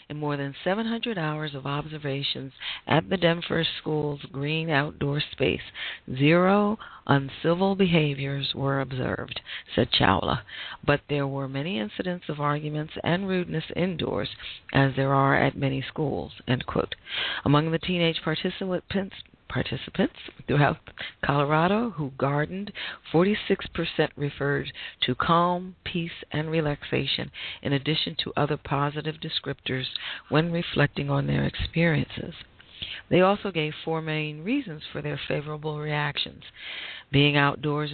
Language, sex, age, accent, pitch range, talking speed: English, female, 40-59, American, 140-165 Hz, 125 wpm